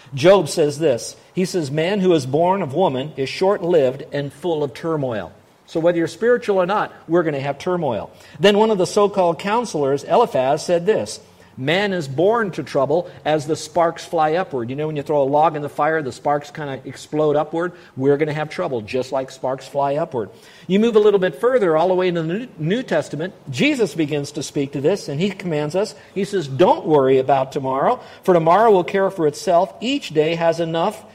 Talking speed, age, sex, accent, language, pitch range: 220 wpm, 50-69, male, American, English, 145-185 Hz